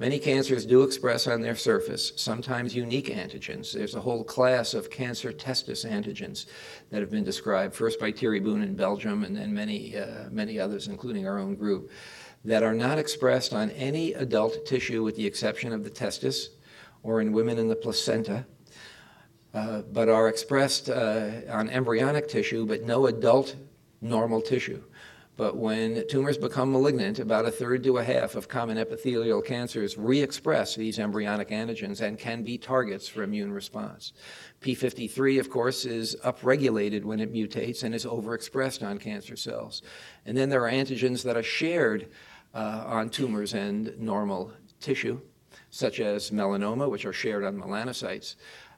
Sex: male